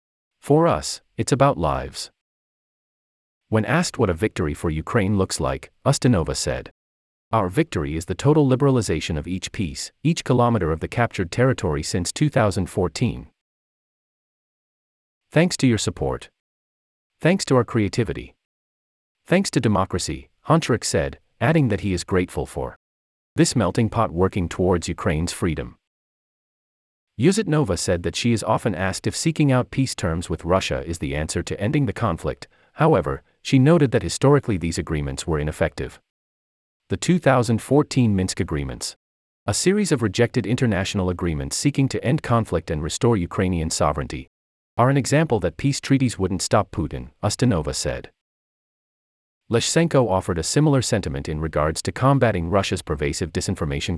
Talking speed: 145 wpm